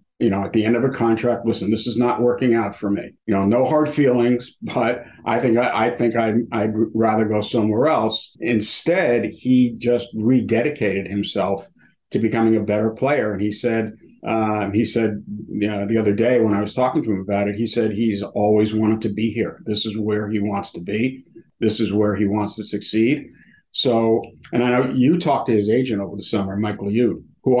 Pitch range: 105-120 Hz